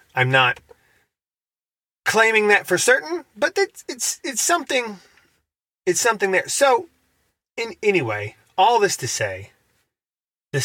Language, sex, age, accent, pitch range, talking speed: English, male, 30-49, American, 125-175 Hz, 125 wpm